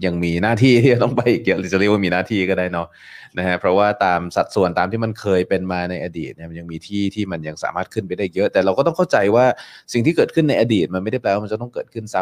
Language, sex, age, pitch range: Thai, male, 20-39, 90-115 Hz